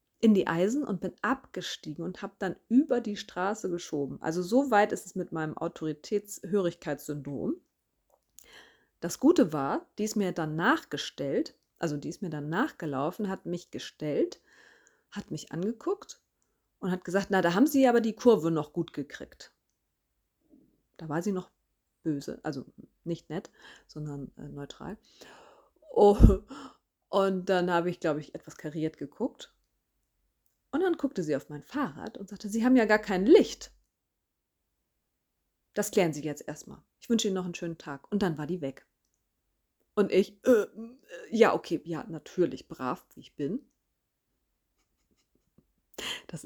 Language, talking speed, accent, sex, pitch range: German, 155 wpm, German, female, 150-205 Hz